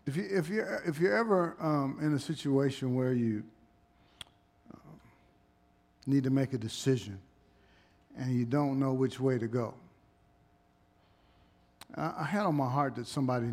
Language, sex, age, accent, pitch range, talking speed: English, male, 50-69, American, 115-165 Hz, 155 wpm